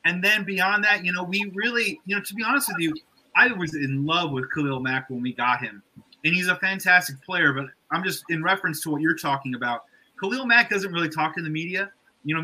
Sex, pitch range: male, 145-185 Hz